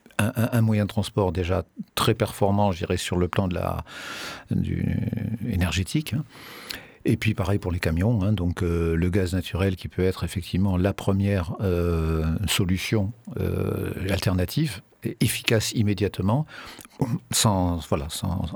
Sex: male